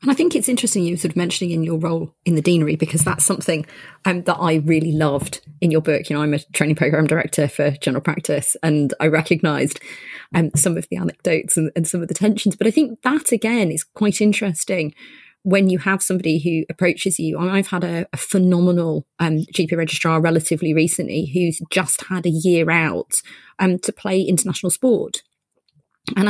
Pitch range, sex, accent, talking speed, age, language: 165-235 Hz, female, British, 205 wpm, 30-49, English